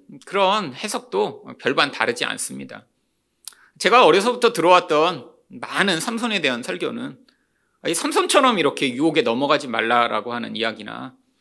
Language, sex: Korean, male